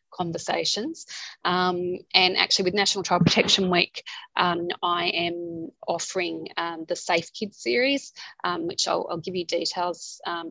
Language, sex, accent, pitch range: English, female, Australian, 170-195 Hz